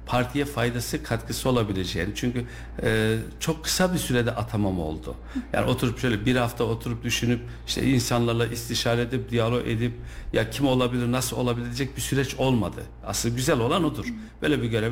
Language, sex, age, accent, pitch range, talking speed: Turkish, male, 60-79, native, 110-130 Hz, 160 wpm